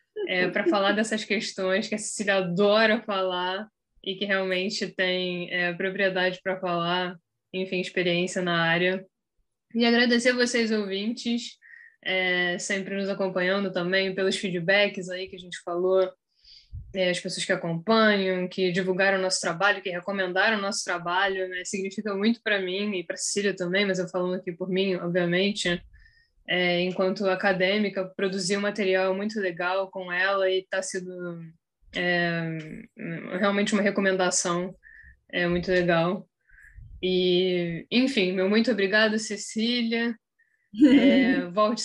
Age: 10-29